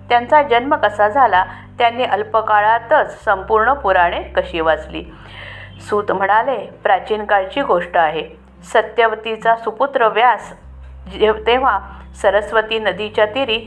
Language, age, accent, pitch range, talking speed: Marathi, 50-69, native, 200-240 Hz, 100 wpm